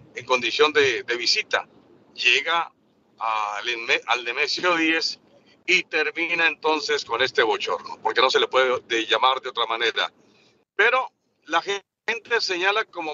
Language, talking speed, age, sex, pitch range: Spanish, 140 wpm, 50-69, male, 145-235 Hz